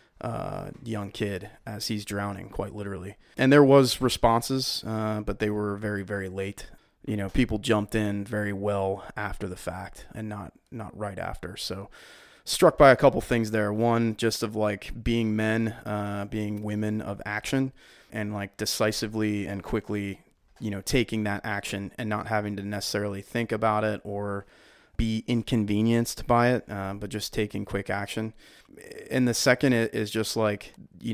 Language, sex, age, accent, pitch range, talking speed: English, male, 20-39, American, 100-115 Hz, 170 wpm